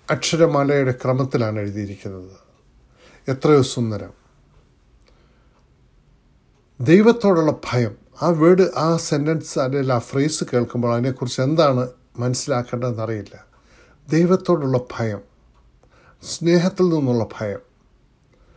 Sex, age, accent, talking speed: male, 60-79, native, 70 wpm